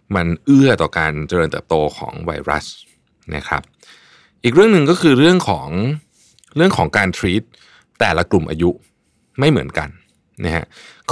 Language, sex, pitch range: Thai, male, 85-115 Hz